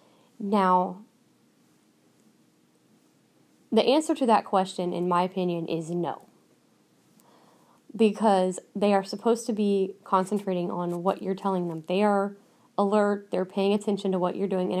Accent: American